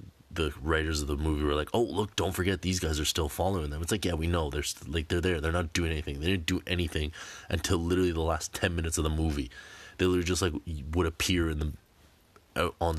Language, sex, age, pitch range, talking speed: English, male, 30-49, 80-90 Hz, 250 wpm